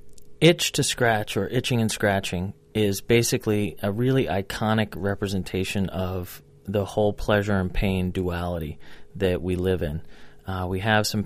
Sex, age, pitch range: male, 30-49, 90-100 Hz